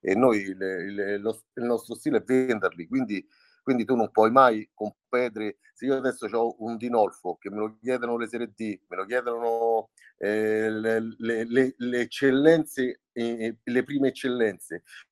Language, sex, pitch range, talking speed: Italian, male, 105-125 Hz, 170 wpm